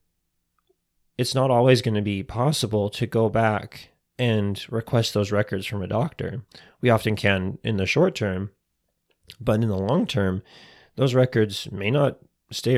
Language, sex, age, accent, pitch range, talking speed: English, male, 20-39, American, 100-125 Hz, 155 wpm